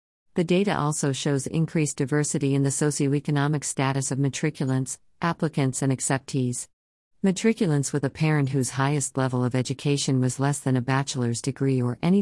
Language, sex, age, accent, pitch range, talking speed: English, female, 50-69, American, 130-155 Hz, 155 wpm